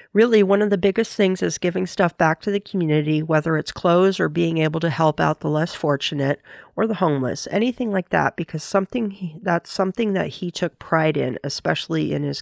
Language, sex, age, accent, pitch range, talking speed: English, female, 40-59, American, 155-200 Hz, 210 wpm